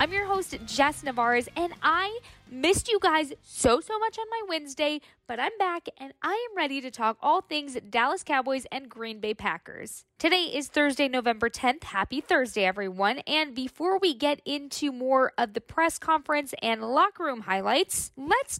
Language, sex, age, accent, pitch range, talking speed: English, female, 20-39, American, 230-305 Hz, 180 wpm